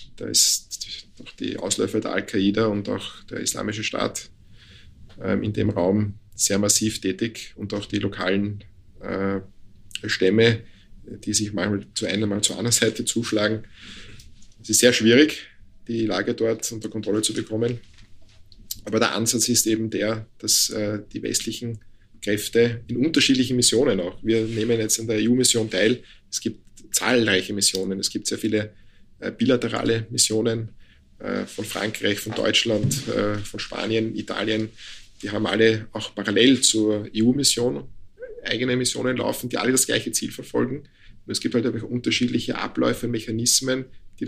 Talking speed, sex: 155 wpm, male